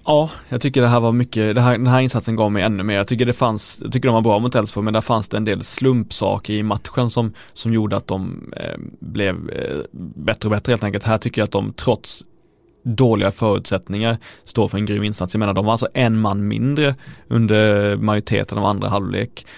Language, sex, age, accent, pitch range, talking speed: Swedish, male, 30-49, native, 105-125 Hz, 230 wpm